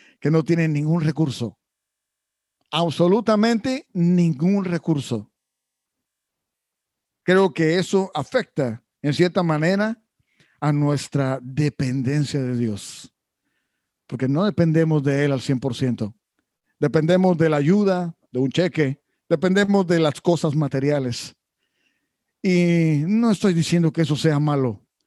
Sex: male